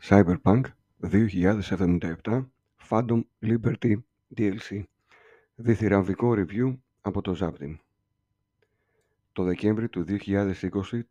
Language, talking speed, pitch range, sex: Greek, 75 wpm, 95-115 Hz, male